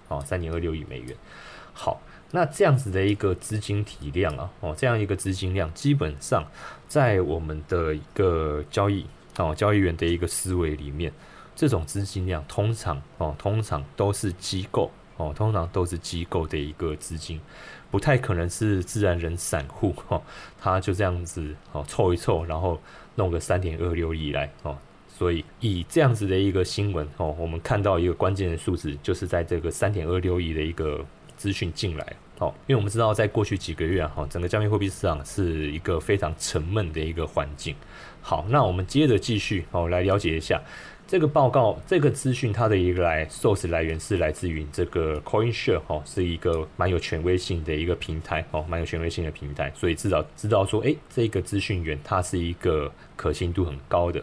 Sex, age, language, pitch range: male, 20-39, Chinese, 80-100 Hz